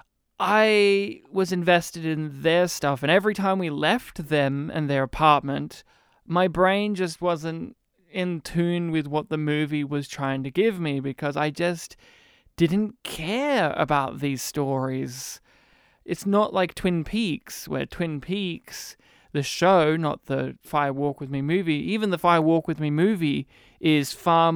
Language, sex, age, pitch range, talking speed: English, male, 20-39, 145-175 Hz, 155 wpm